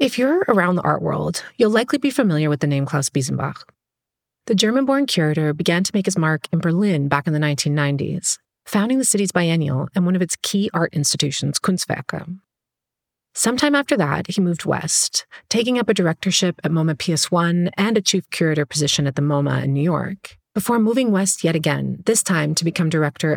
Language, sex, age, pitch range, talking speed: English, female, 30-49, 155-200 Hz, 195 wpm